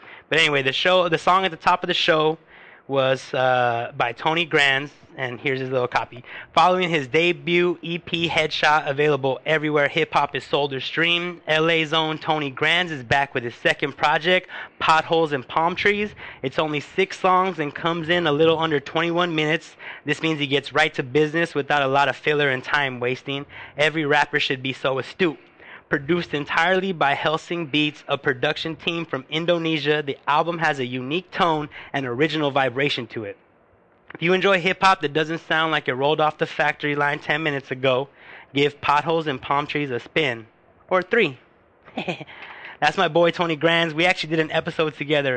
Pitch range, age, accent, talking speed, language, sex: 130-165 Hz, 20-39, American, 185 wpm, English, male